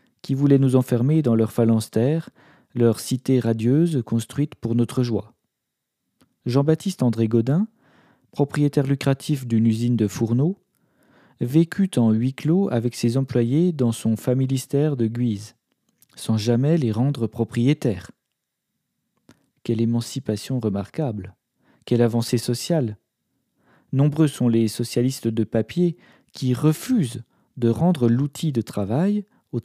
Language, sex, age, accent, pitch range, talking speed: French, male, 40-59, French, 115-145 Hz, 120 wpm